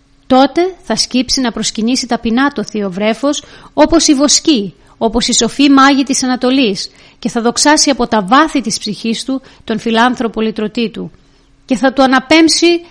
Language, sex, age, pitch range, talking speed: Greek, female, 30-49, 220-280 Hz, 165 wpm